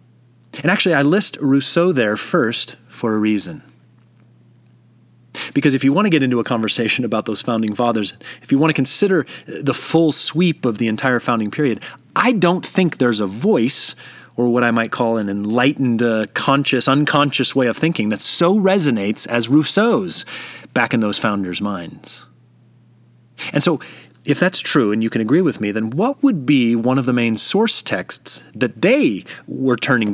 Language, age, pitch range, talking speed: English, 30-49, 105-145 Hz, 180 wpm